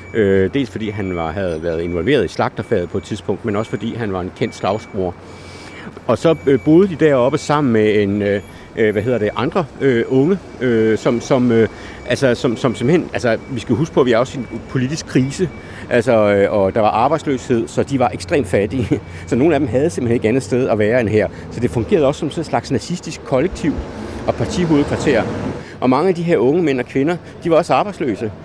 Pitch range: 105-140 Hz